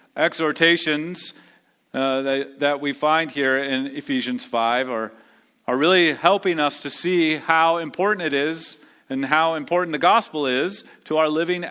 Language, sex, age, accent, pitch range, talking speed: English, male, 40-59, American, 140-185 Hz, 155 wpm